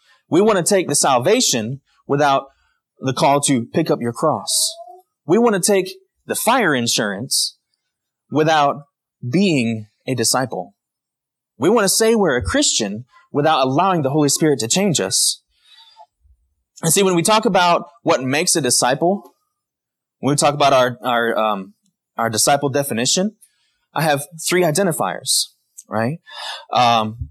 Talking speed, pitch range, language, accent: 145 wpm, 125-180 Hz, English, American